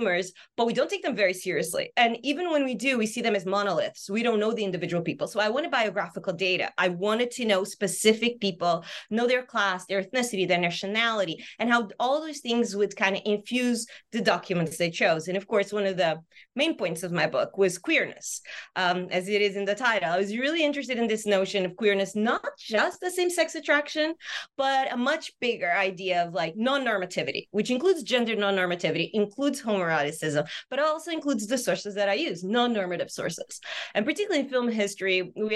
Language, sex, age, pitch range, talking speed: English, female, 30-49, 185-245 Hz, 200 wpm